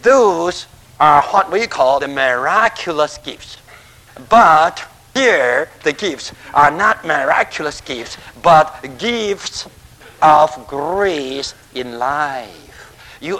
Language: English